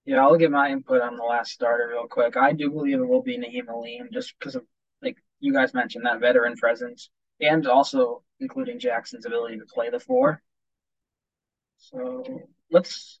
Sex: male